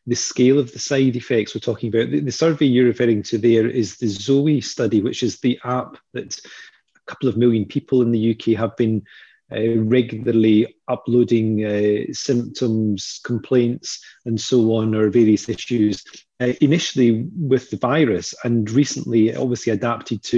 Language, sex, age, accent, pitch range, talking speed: English, male, 30-49, British, 115-135 Hz, 170 wpm